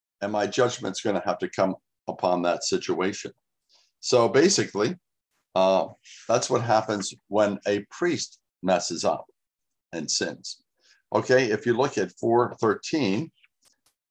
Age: 60-79